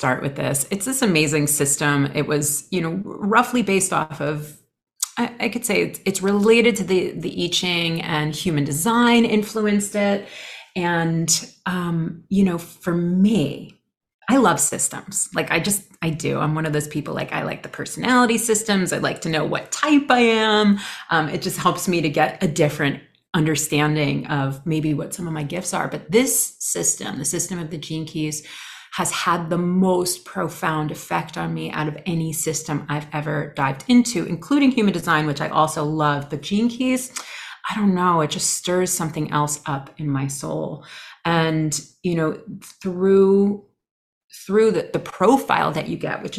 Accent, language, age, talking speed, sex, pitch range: American, English, 30-49, 185 wpm, female, 150-195 Hz